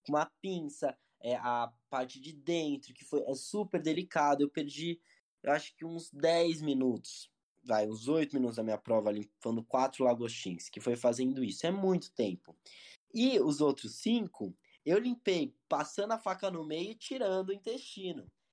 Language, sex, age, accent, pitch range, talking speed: Portuguese, male, 20-39, Brazilian, 120-175 Hz, 170 wpm